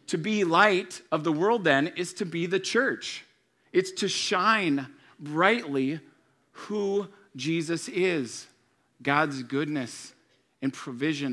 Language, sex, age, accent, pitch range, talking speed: English, male, 40-59, American, 140-170 Hz, 120 wpm